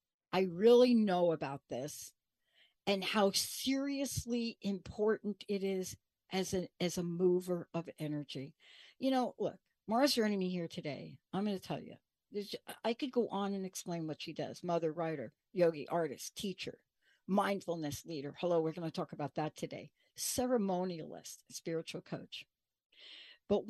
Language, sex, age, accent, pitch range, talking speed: English, female, 60-79, American, 165-215 Hz, 145 wpm